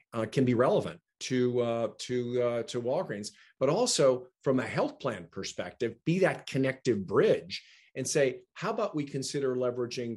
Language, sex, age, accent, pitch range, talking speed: English, male, 40-59, American, 115-135 Hz, 165 wpm